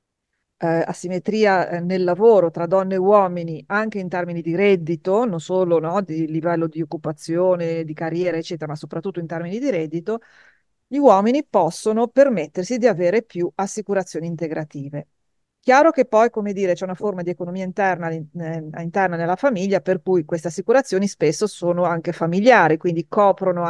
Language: Italian